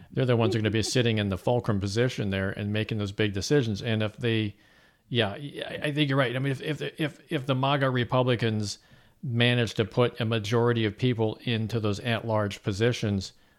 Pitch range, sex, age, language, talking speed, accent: 105-130 Hz, male, 50-69, English, 200 wpm, American